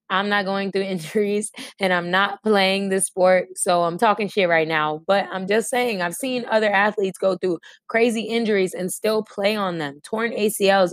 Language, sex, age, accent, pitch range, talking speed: English, female, 20-39, American, 185-220 Hz, 200 wpm